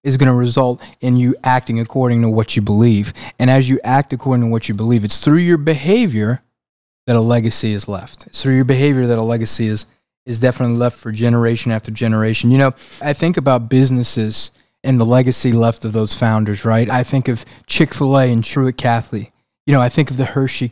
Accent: American